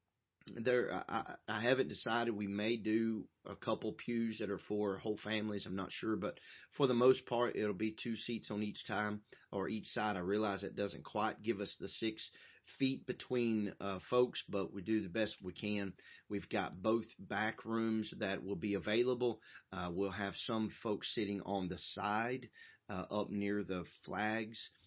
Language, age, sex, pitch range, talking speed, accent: English, 30-49, male, 95-110 Hz, 185 wpm, American